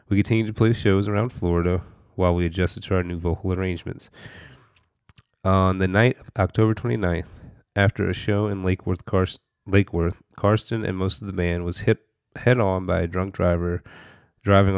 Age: 30-49